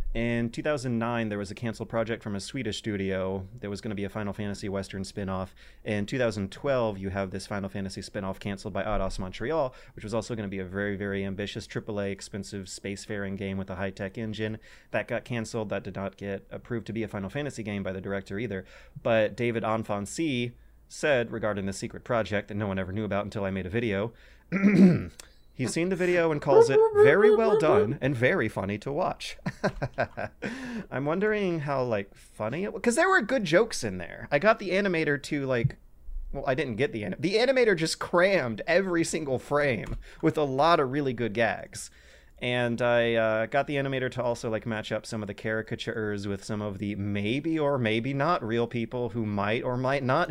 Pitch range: 100-140 Hz